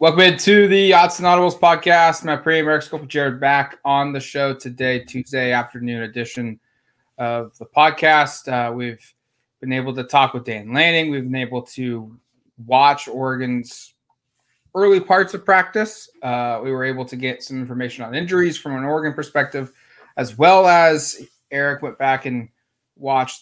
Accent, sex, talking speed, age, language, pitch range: American, male, 160 wpm, 20-39, English, 120-155 Hz